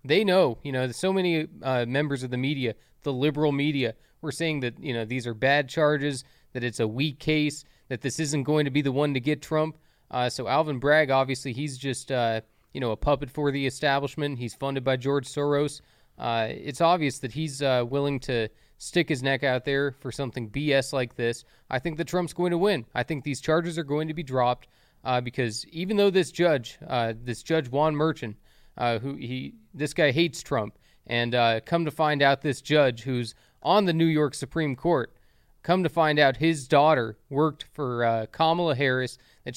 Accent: American